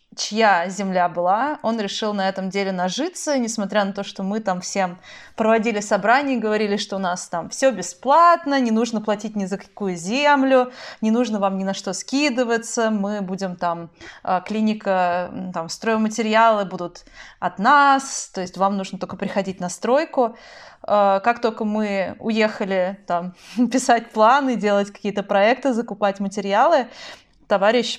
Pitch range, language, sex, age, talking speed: 195-235 Hz, Russian, female, 20-39, 150 wpm